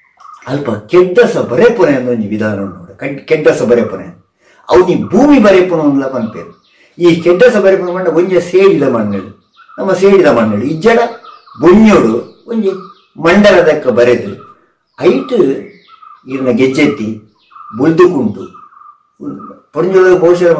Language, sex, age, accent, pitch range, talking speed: Kannada, male, 60-79, native, 125-195 Hz, 100 wpm